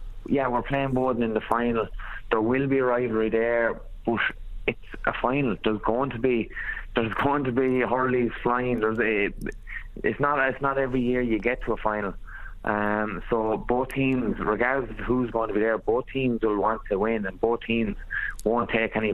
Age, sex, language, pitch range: 20-39, male, English, 105-120 Hz